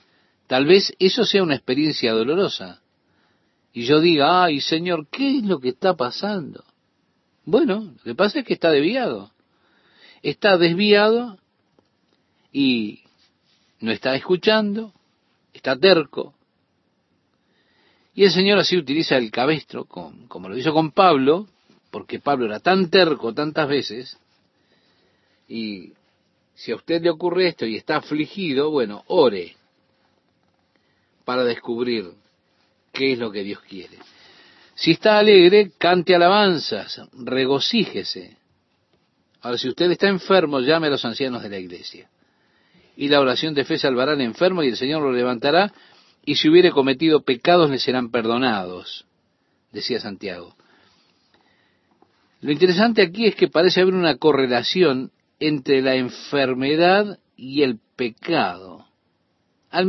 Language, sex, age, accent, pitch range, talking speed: Spanish, male, 50-69, Argentinian, 125-185 Hz, 130 wpm